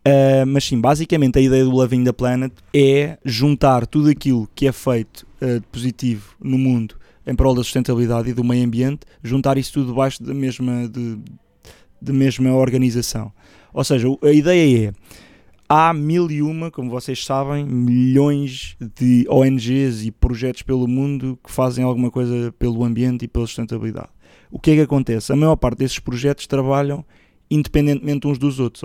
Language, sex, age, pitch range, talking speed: Portuguese, male, 20-39, 120-135 Hz, 170 wpm